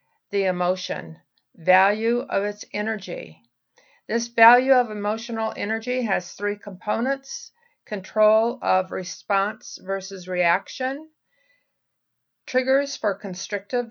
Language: English